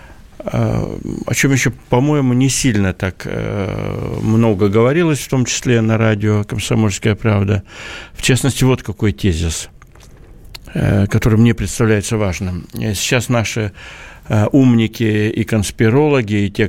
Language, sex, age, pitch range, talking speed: Russian, male, 60-79, 105-130 Hz, 115 wpm